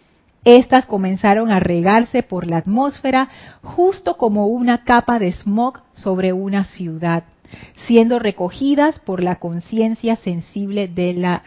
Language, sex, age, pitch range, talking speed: Spanish, female, 30-49, 190-235 Hz, 125 wpm